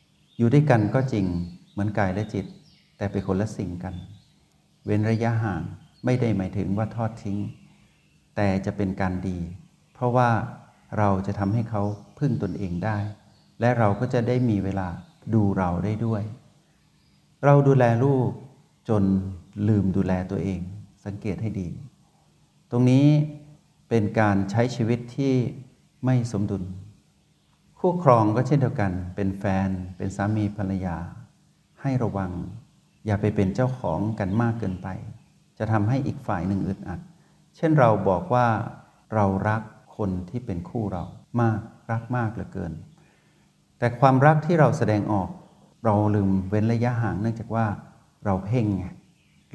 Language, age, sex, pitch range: Thai, 60-79, male, 95-125 Hz